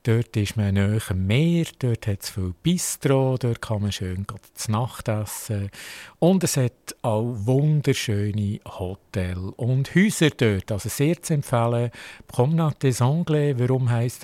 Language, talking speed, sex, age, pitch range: German, 150 wpm, male, 50-69, 105-140 Hz